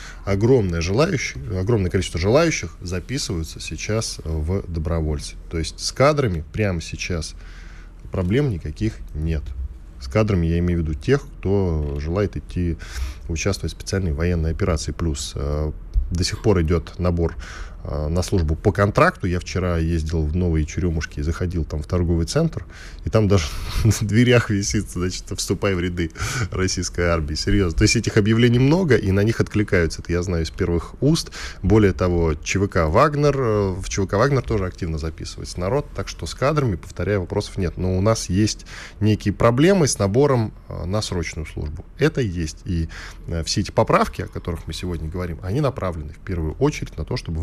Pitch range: 80-105 Hz